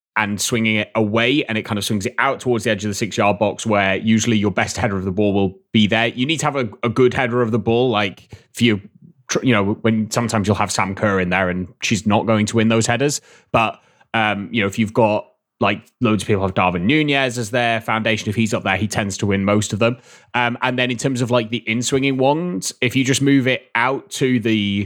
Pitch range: 105-125 Hz